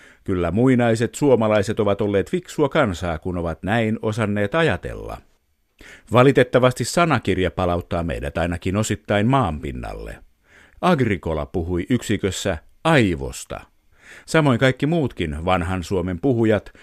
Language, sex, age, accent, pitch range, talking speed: Finnish, male, 50-69, native, 85-110 Hz, 105 wpm